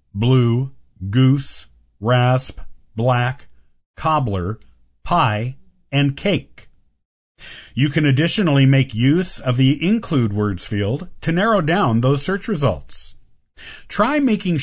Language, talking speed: English, 105 wpm